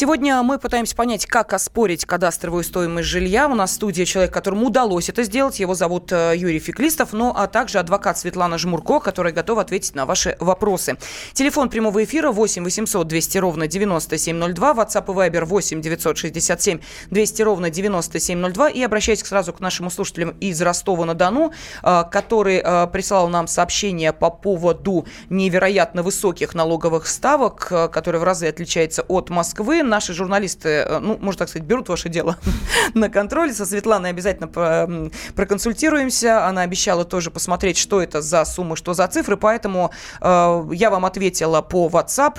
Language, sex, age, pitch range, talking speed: Russian, female, 20-39, 170-215 Hz, 150 wpm